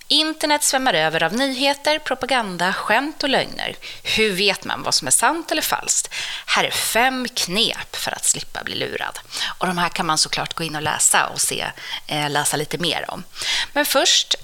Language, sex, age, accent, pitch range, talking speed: Swedish, female, 30-49, native, 165-235 Hz, 185 wpm